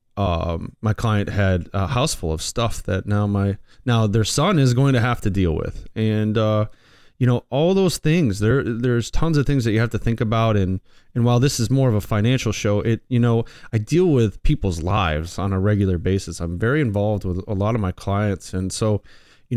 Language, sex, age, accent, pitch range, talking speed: English, male, 30-49, American, 100-125 Hz, 225 wpm